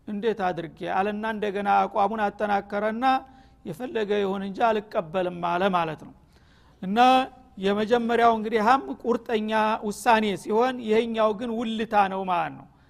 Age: 50-69